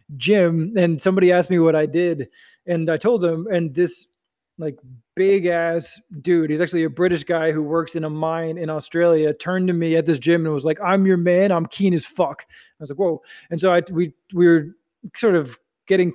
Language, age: English, 20-39